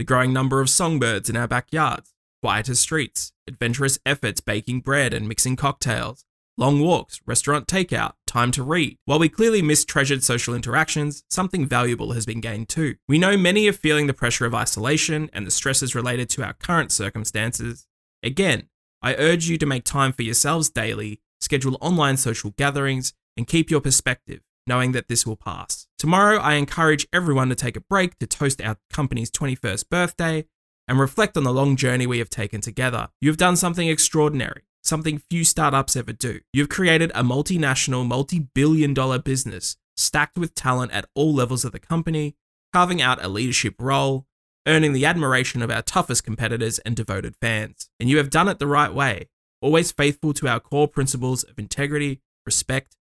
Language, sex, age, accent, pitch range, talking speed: English, male, 20-39, Australian, 120-155 Hz, 180 wpm